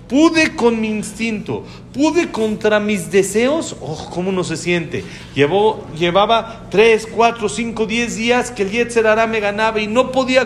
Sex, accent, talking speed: male, Mexican, 155 wpm